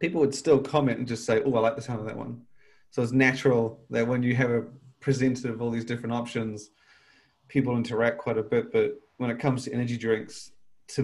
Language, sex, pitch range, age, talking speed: English, male, 110-135 Hz, 30-49, 230 wpm